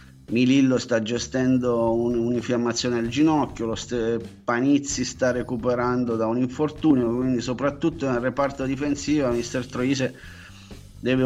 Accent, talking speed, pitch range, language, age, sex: native, 125 wpm, 115-135 Hz, Italian, 30-49, male